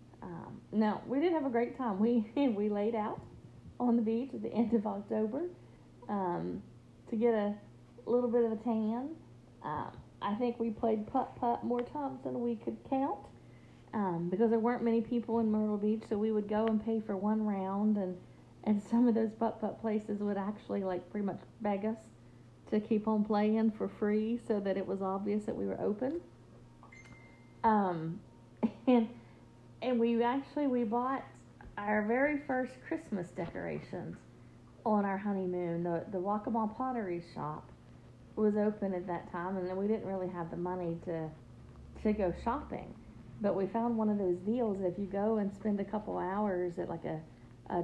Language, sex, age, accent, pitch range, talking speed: English, female, 40-59, American, 190-230 Hz, 180 wpm